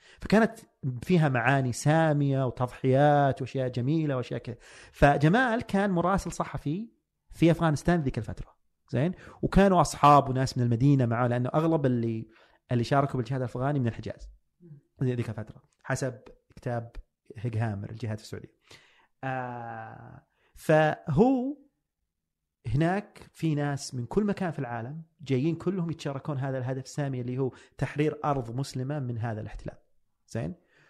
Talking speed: 125 wpm